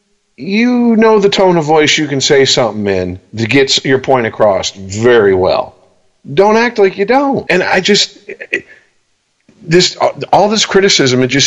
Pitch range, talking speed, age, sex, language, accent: 120-190 Hz, 165 wpm, 40-59, male, English, American